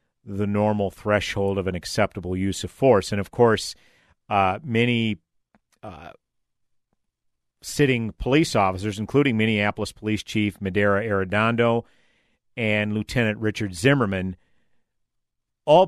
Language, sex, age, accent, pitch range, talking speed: English, male, 50-69, American, 100-125 Hz, 110 wpm